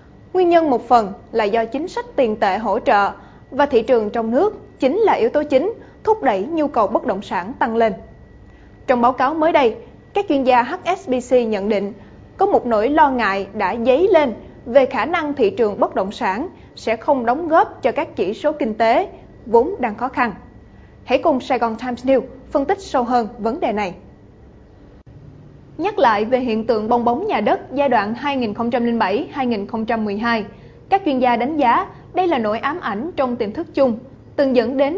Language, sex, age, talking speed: Vietnamese, female, 20-39, 195 wpm